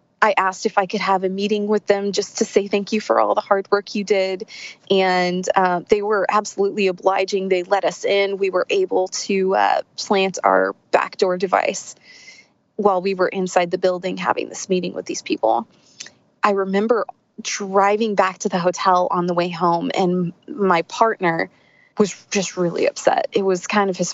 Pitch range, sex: 180-205 Hz, female